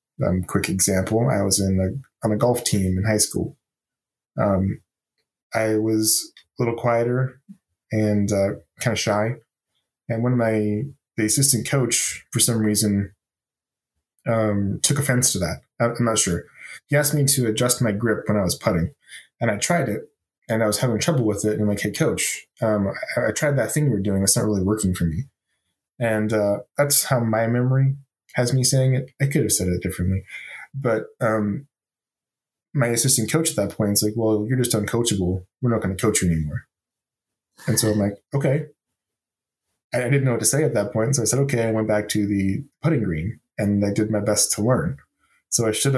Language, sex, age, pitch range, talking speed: English, male, 20-39, 105-125 Hz, 205 wpm